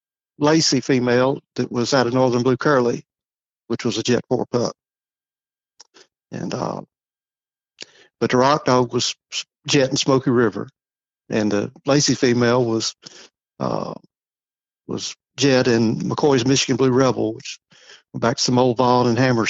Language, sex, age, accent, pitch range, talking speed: English, male, 60-79, American, 120-140 Hz, 150 wpm